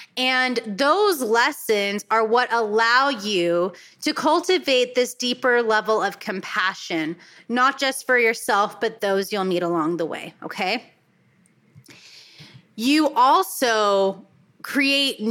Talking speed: 115 wpm